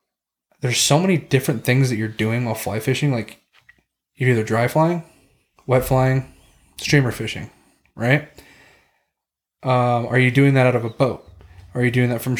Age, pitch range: 20-39, 115-140 Hz